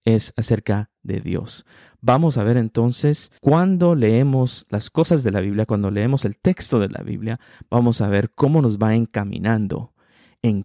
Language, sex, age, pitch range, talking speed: Spanish, male, 50-69, 110-145 Hz, 170 wpm